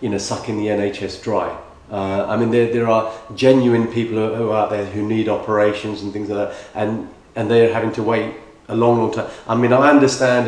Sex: male